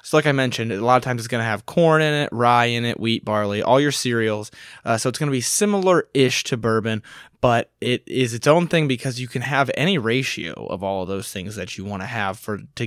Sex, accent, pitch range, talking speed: male, American, 105-130 Hz, 260 wpm